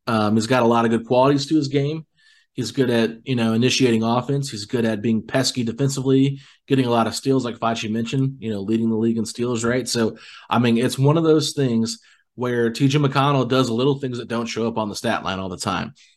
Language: English